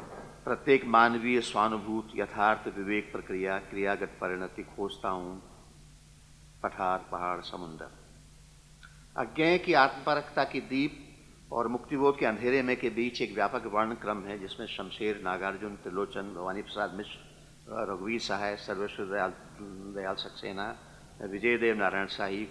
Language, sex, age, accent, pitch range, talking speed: Hindi, male, 50-69, native, 100-130 Hz, 125 wpm